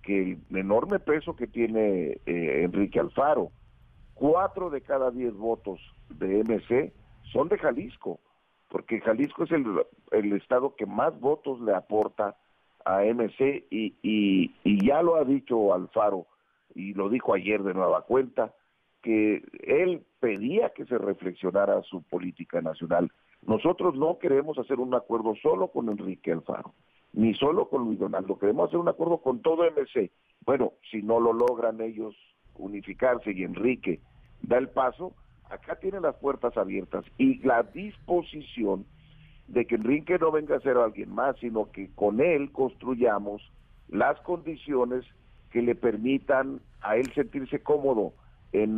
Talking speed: 150 wpm